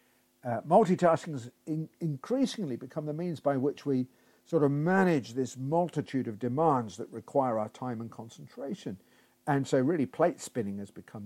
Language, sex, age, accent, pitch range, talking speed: English, male, 50-69, British, 115-150 Hz, 160 wpm